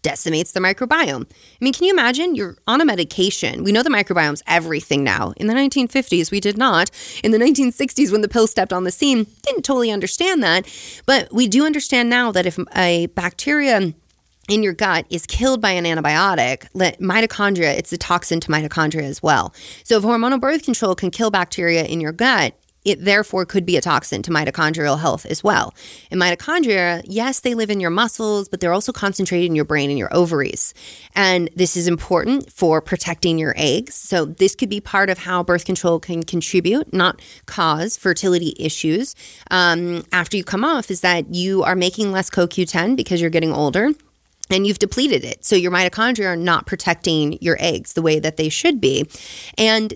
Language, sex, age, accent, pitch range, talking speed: English, female, 30-49, American, 170-230 Hz, 195 wpm